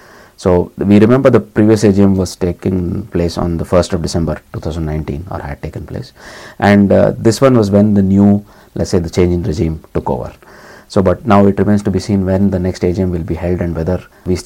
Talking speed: 220 wpm